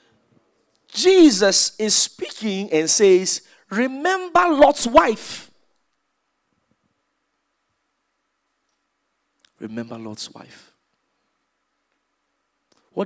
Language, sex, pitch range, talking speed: English, male, 145-220 Hz, 55 wpm